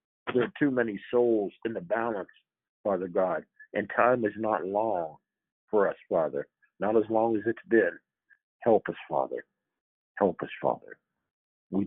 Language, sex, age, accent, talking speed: English, male, 60-79, American, 155 wpm